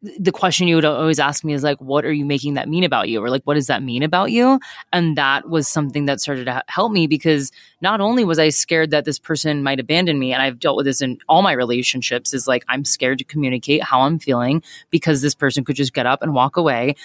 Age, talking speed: 20-39, 260 wpm